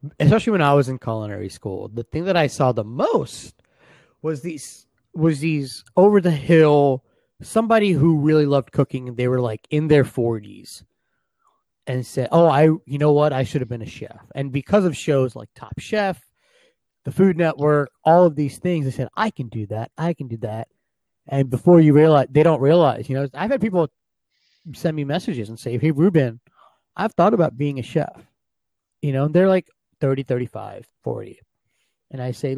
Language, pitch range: English, 125-155 Hz